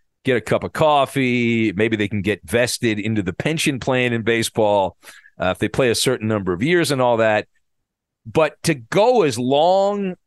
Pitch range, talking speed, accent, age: 125-175 Hz, 195 wpm, American, 50-69